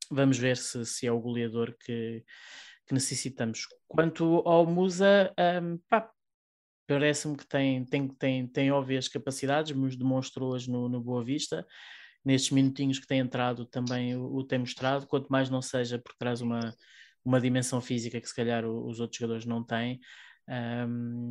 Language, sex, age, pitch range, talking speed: Portuguese, male, 20-39, 120-140 Hz, 170 wpm